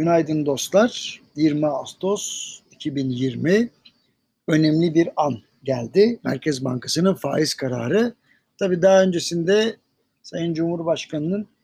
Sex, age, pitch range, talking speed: male, 60-79, 160-215 Hz, 95 wpm